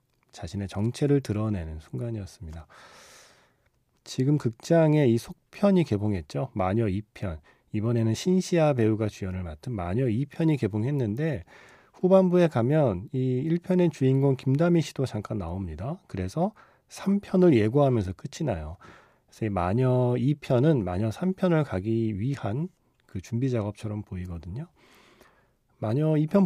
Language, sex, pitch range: Korean, male, 105-145 Hz